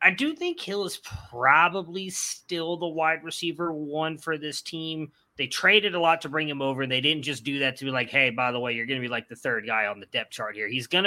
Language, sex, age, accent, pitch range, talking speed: English, male, 30-49, American, 135-170 Hz, 270 wpm